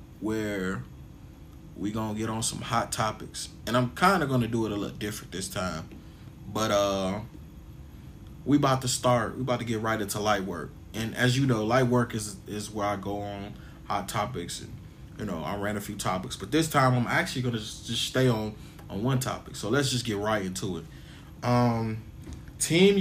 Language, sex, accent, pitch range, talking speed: English, male, American, 100-130 Hz, 200 wpm